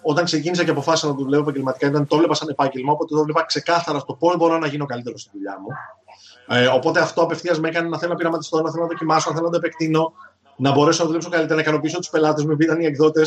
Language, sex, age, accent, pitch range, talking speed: Greek, male, 30-49, native, 135-165 Hz, 265 wpm